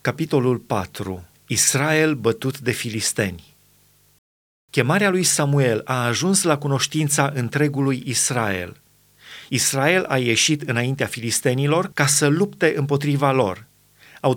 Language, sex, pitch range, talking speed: Romanian, male, 125-155 Hz, 110 wpm